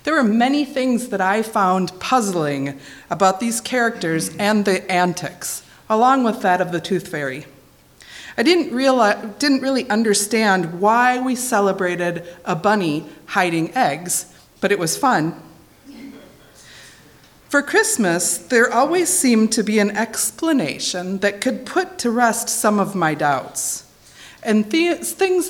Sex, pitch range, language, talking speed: female, 180-255 Hz, English, 135 wpm